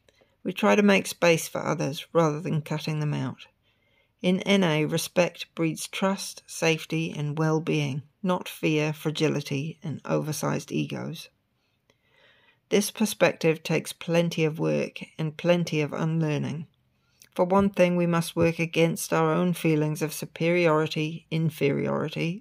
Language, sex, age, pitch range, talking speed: English, female, 60-79, 150-180 Hz, 130 wpm